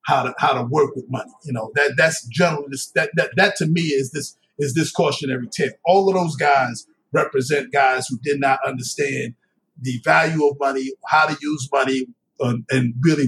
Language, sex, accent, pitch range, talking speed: English, male, American, 145-230 Hz, 200 wpm